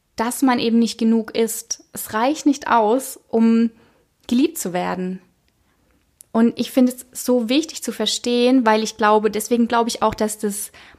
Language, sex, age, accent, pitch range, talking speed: German, female, 20-39, German, 215-255 Hz, 170 wpm